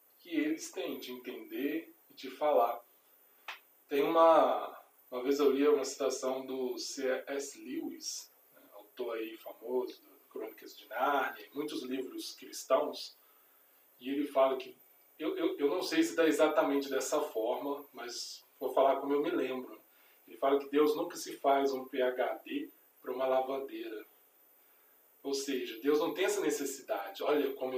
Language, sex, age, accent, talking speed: Portuguese, male, 20-39, Brazilian, 155 wpm